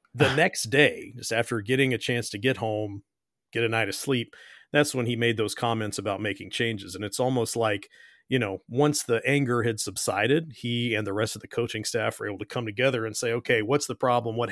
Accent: American